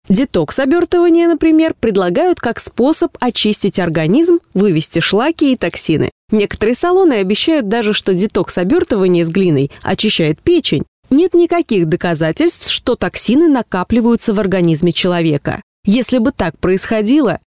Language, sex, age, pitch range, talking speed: Russian, female, 20-39, 180-270 Hz, 120 wpm